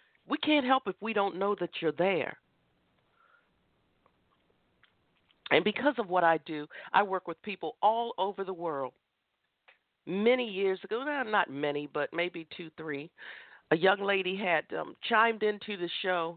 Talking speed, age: 155 wpm, 50-69